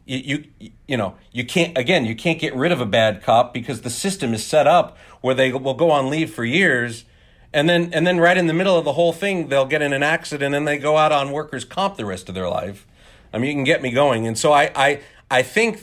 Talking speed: 270 wpm